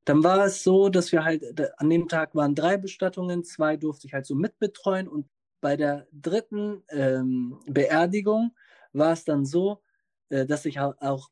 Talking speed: 175 wpm